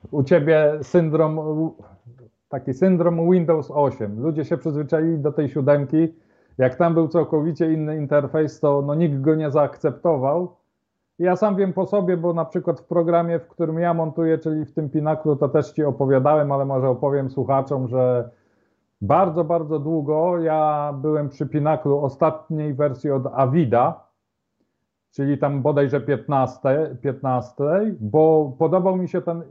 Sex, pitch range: male, 145-175 Hz